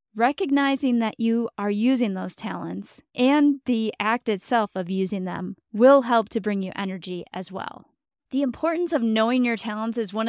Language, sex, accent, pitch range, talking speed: English, female, American, 200-245 Hz, 175 wpm